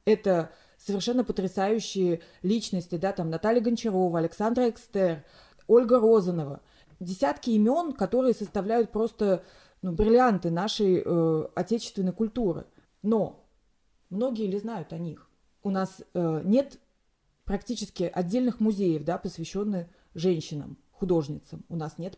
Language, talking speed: Russian, 115 wpm